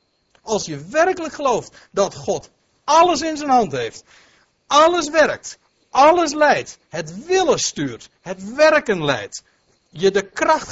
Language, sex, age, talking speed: Dutch, male, 60-79, 135 wpm